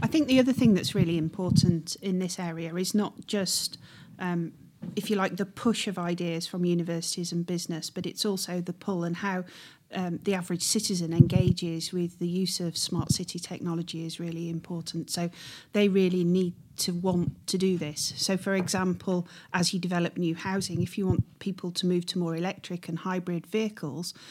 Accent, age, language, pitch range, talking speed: British, 40-59, English, 165-185 Hz, 190 wpm